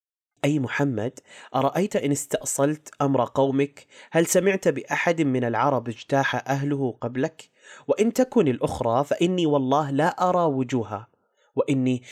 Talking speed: 120 wpm